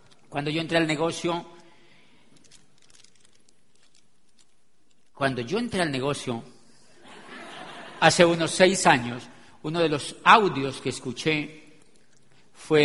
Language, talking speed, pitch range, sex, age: Spanish, 100 wpm, 155-190 Hz, male, 50-69